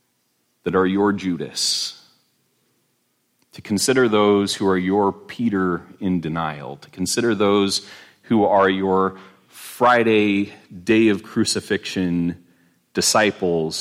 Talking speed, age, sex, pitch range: 105 wpm, 40-59, male, 80-100 Hz